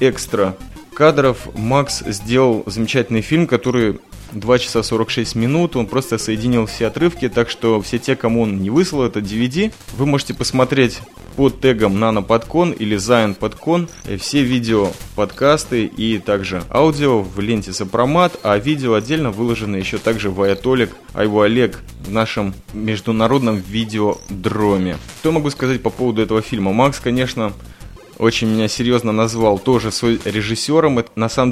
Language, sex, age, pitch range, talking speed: Russian, male, 20-39, 105-130 Hz, 145 wpm